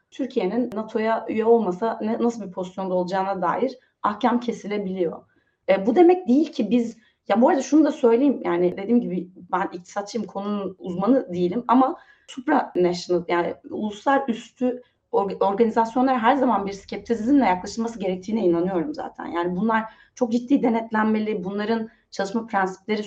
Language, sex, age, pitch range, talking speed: Turkish, female, 30-49, 185-235 Hz, 140 wpm